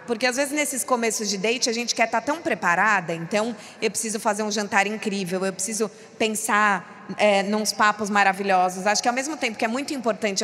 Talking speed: 215 wpm